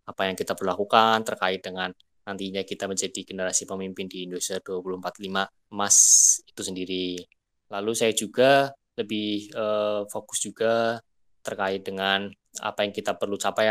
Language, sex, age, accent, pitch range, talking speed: Indonesian, male, 20-39, native, 95-110 Hz, 135 wpm